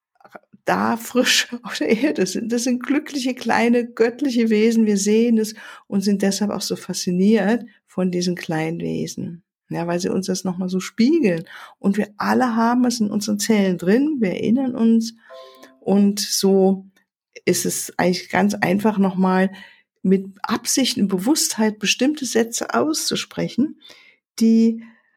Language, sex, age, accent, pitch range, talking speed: German, female, 50-69, German, 195-240 Hz, 150 wpm